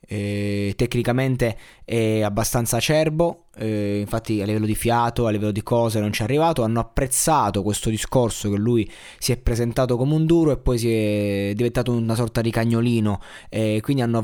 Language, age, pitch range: Italian, 20-39, 110-135 Hz